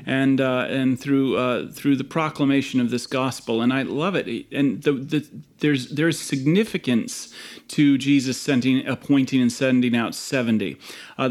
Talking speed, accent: 160 wpm, American